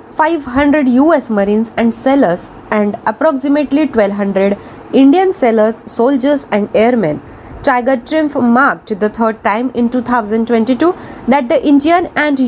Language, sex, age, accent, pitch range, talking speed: Marathi, female, 20-39, native, 235-290 Hz, 120 wpm